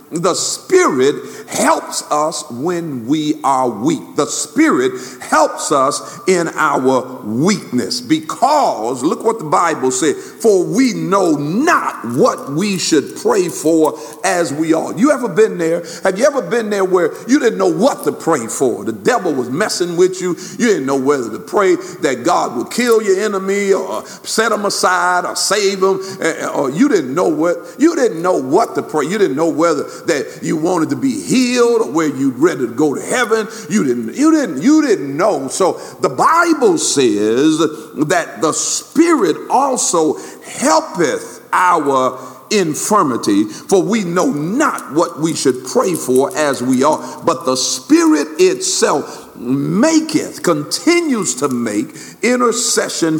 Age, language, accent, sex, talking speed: 50-69, English, American, male, 160 wpm